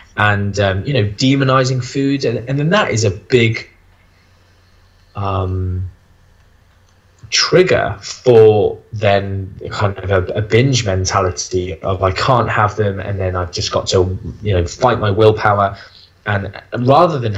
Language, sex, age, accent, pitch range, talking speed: English, male, 10-29, British, 95-125 Hz, 145 wpm